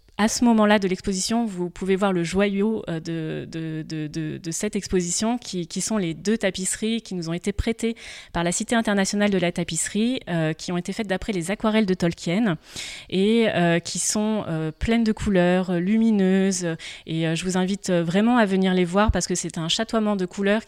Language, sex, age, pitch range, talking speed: French, female, 20-39, 175-220 Hz, 205 wpm